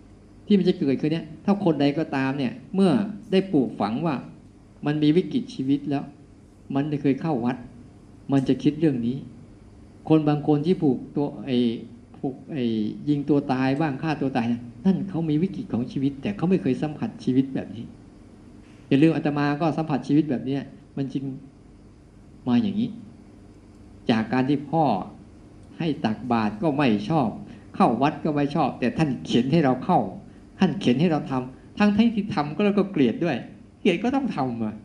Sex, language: male, Thai